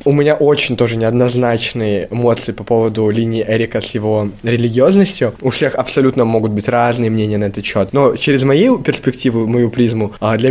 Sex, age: male, 20-39